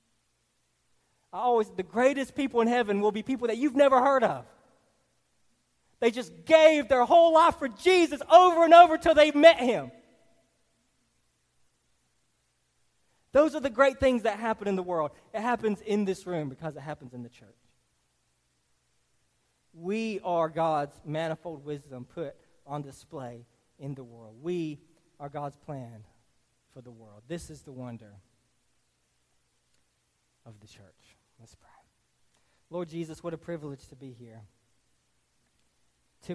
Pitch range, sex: 120-190 Hz, male